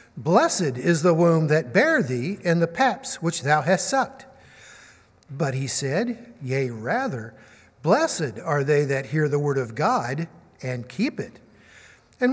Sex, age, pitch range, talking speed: male, 50-69, 130-205 Hz, 155 wpm